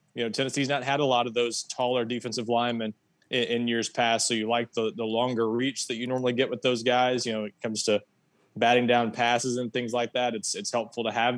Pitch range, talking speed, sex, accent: 115-135 Hz, 255 wpm, male, American